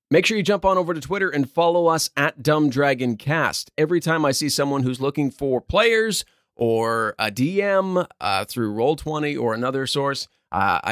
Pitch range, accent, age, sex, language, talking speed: 120-180 Hz, American, 30-49, male, English, 190 wpm